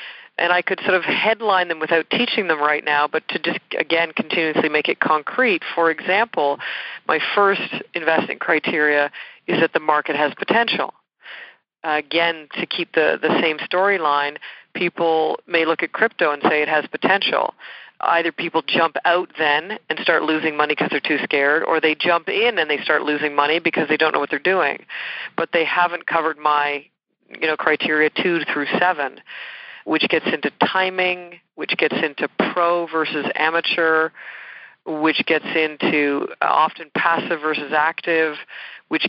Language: English